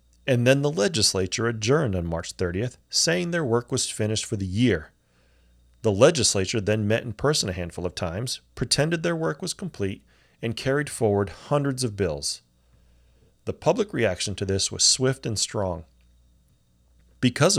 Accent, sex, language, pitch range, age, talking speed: American, male, English, 95-125 Hz, 30-49, 160 wpm